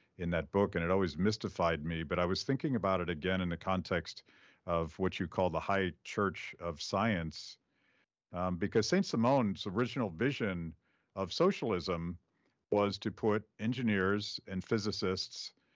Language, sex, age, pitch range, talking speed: English, male, 50-69, 85-105 Hz, 155 wpm